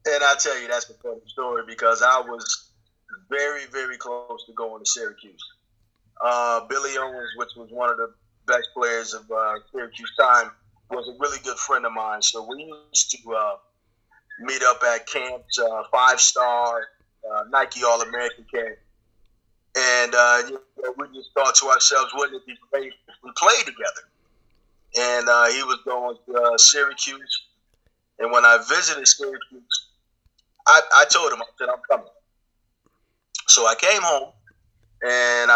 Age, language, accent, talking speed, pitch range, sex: 30-49, English, American, 165 wpm, 115-145 Hz, male